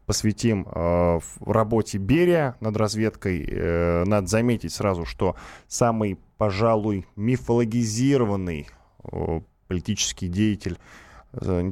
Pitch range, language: 90-120 Hz, Russian